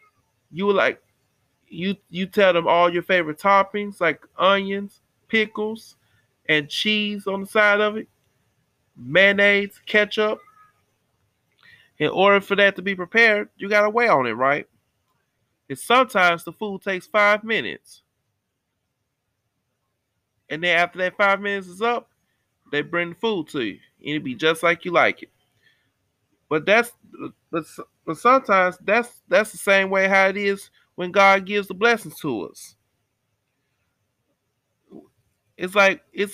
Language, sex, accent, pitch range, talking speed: English, male, American, 135-205 Hz, 145 wpm